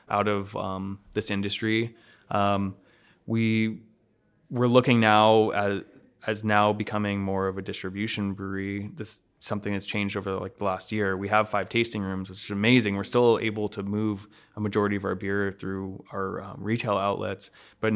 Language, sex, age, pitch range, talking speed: English, male, 20-39, 100-110 Hz, 175 wpm